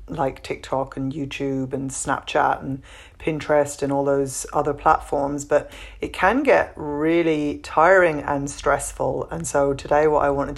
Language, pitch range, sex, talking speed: English, 135-145 Hz, female, 155 wpm